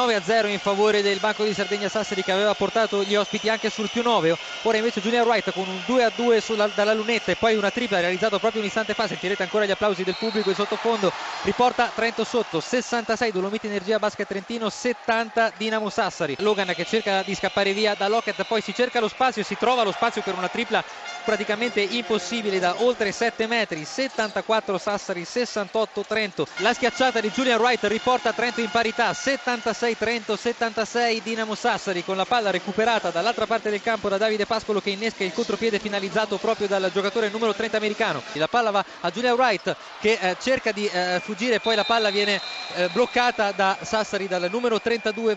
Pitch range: 200-230 Hz